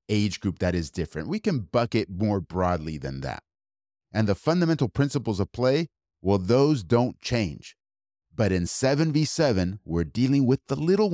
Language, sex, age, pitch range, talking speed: English, male, 30-49, 95-125 Hz, 160 wpm